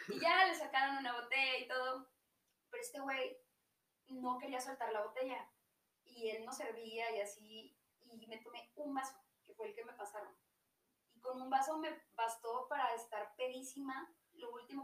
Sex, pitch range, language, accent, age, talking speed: female, 220-260 Hz, Spanish, Mexican, 20-39, 180 wpm